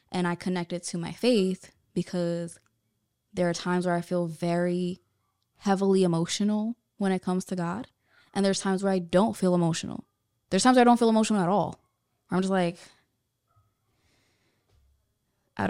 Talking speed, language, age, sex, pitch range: 160 wpm, English, 10-29, female, 175-200 Hz